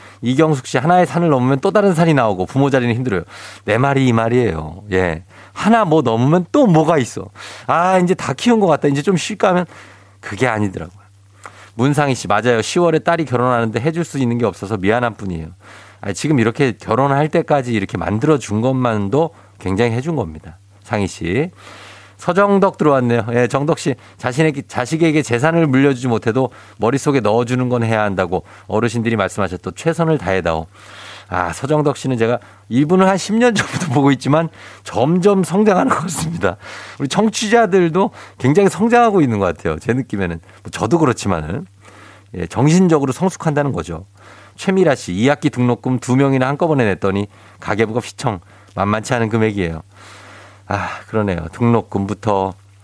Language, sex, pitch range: Korean, male, 100-145 Hz